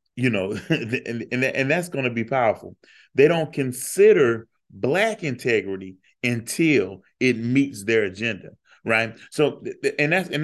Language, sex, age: English, male, 30-49